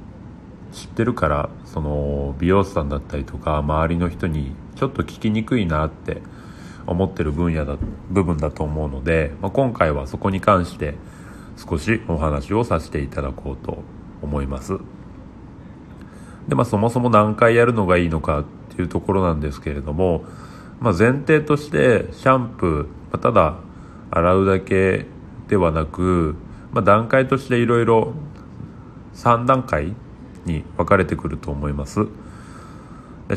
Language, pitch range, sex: Japanese, 80-110 Hz, male